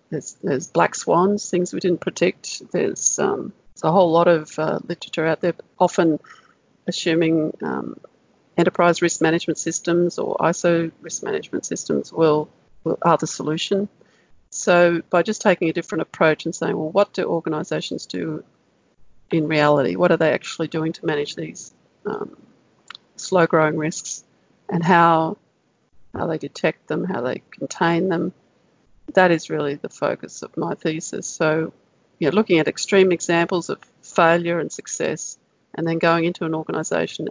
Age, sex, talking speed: 40-59, female, 160 wpm